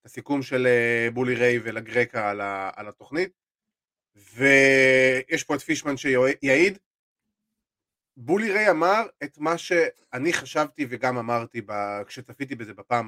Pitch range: 125-185 Hz